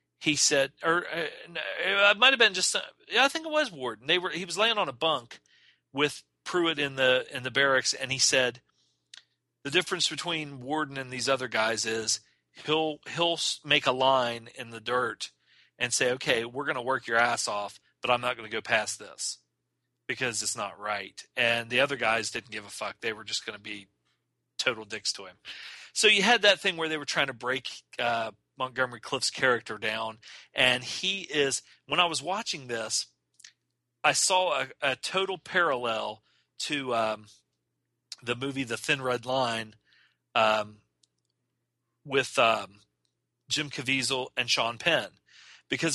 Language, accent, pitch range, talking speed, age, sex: English, American, 115-155 Hz, 180 wpm, 40-59, male